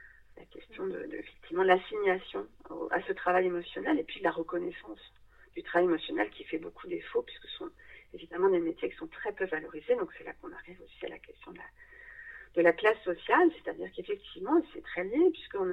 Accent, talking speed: French, 215 wpm